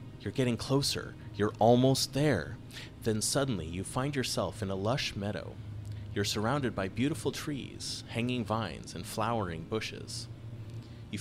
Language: English